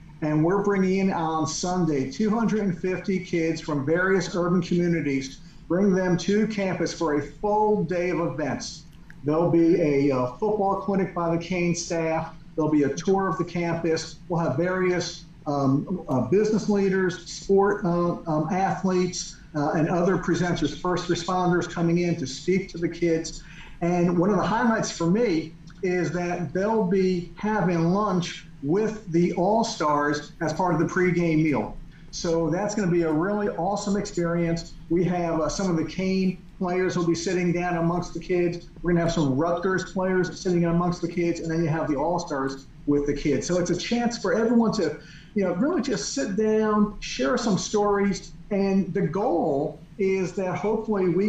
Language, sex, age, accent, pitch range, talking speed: English, male, 50-69, American, 165-190 Hz, 175 wpm